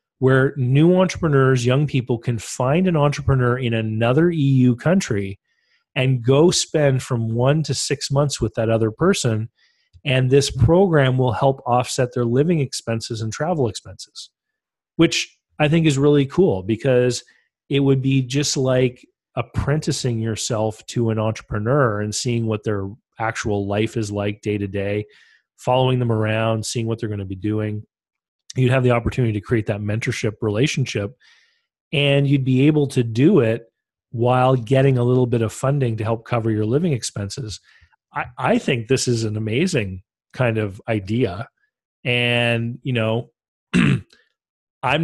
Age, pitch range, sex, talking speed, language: 30-49, 110-140 Hz, male, 155 wpm, English